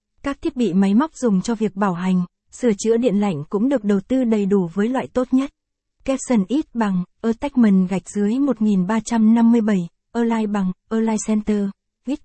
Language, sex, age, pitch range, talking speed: Vietnamese, female, 20-39, 200-235 Hz, 175 wpm